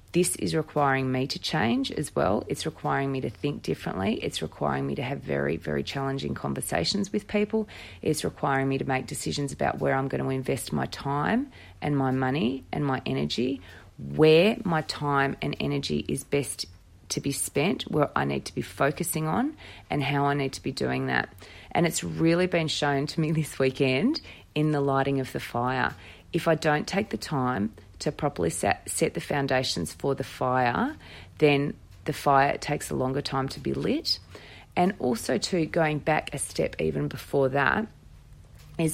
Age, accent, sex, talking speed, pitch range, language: 30-49, Australian, female, 185 wpm, 120-155 Hz, English